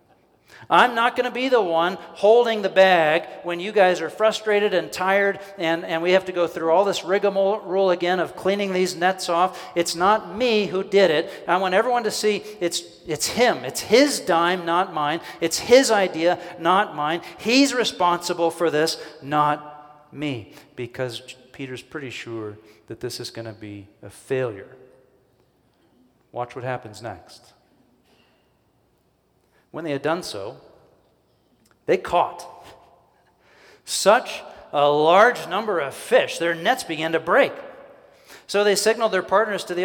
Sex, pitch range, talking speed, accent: male, 130-190 Hz, 155 wpm, American